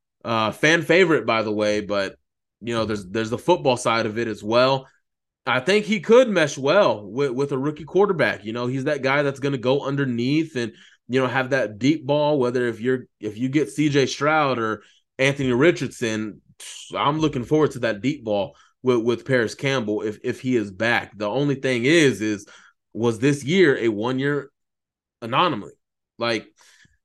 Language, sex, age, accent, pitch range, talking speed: English, male, 20-39, American, 115-145 Hz, 190 wpm